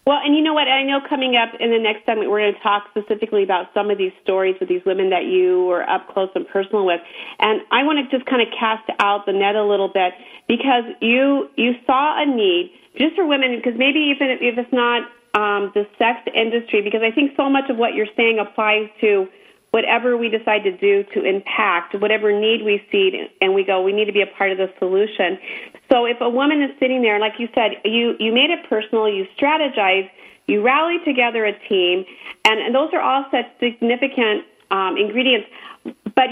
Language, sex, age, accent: English, female, 40-59, American